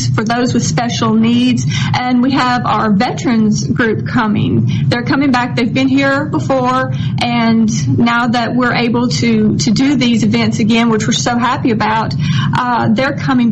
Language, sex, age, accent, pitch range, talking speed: English, female, 40-59, American, 155-250 Hz, 170 wpm